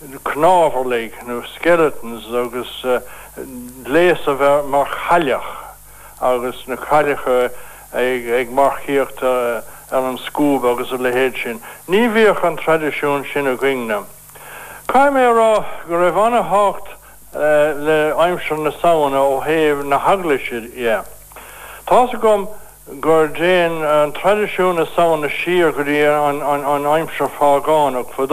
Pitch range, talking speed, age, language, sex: 135-165 Hz, 70 wpm, 60-79, English, male